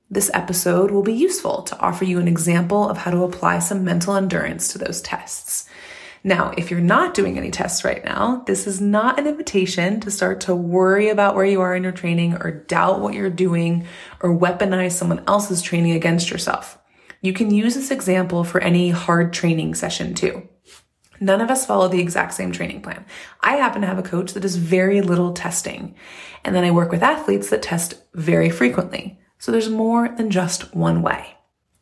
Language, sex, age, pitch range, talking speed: English, female, 20-39, 175-200 Hz, 200 wpm